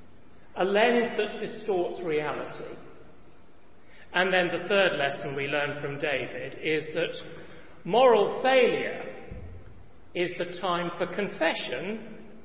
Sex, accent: male, British